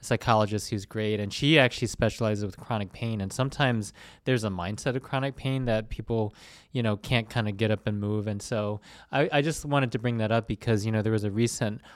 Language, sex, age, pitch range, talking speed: English, male, 20-39, 105-120 Hz, 230 wpm